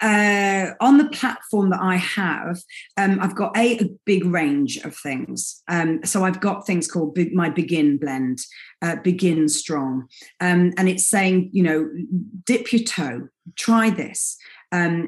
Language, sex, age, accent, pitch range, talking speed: English, female, 30-49, British, 175-230 Hz, 160 wpm